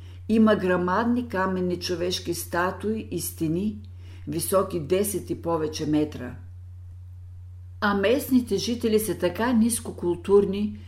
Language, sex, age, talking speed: Bulgarian, female, 50-69, 100 wpm